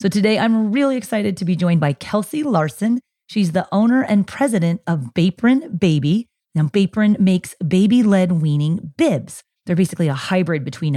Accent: American